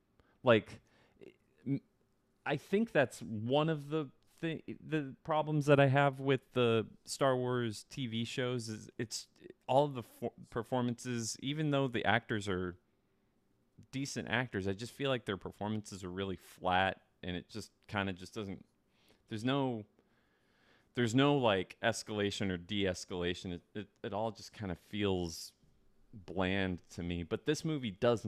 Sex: male